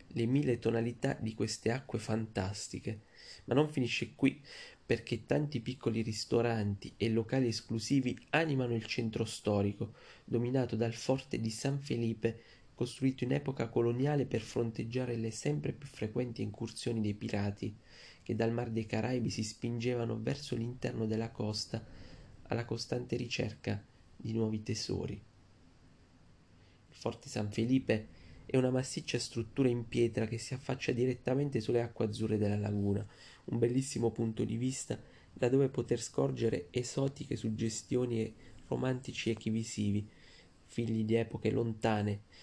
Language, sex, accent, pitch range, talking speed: Italian, male, native, 110-125 Hz, 135 wpm